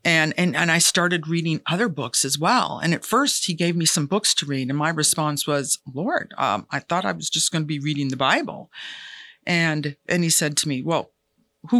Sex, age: female, 50-69